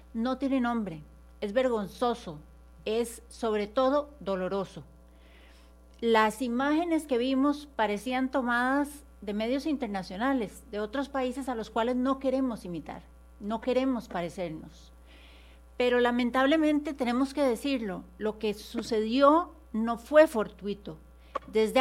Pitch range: 190-255 Hz